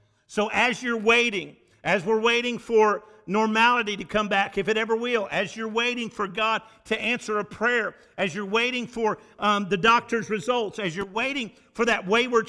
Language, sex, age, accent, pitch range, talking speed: English, male, 50-69, American, 195-235 Hz, 185 wpm